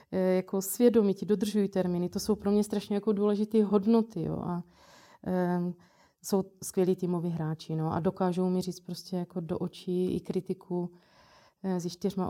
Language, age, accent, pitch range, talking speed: Czech, 30-49, native, 175-210 Hz, 155 wpm